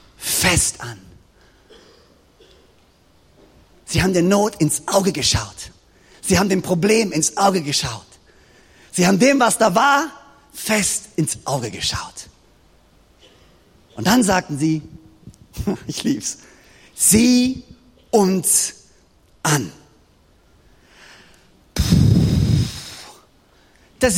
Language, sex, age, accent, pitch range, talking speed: German, male, 40-59, German, 170-280 Hz, 90 wpm